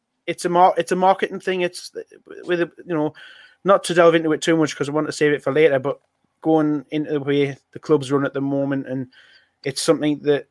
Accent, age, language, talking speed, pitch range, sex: British, 20-39, English, 235 wpm, 130-155 Hz, male